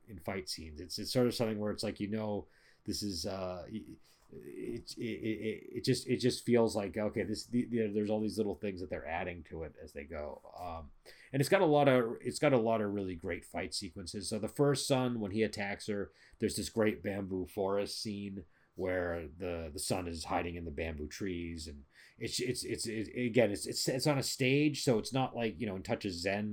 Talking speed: 235 wpm